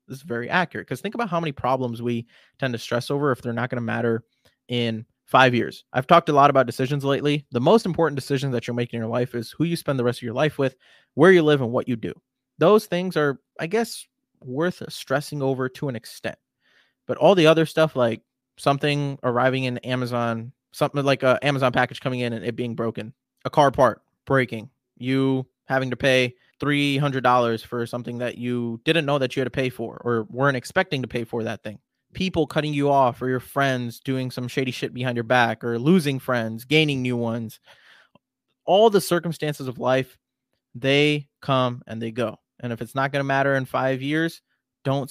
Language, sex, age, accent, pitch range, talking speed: English, male, 20-39, American, 120-145 Hz, 215 wpm